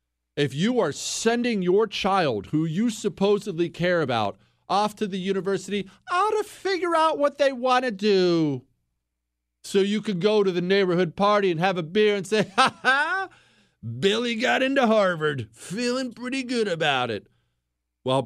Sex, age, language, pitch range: male, 40-59, English, 125-205 Hz